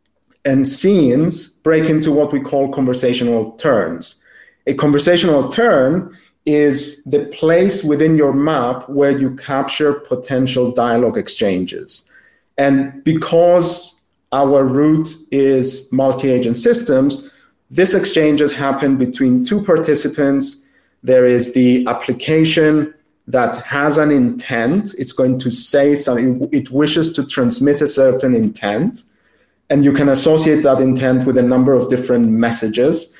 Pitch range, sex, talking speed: 130-160 Hz, male, 125 wpm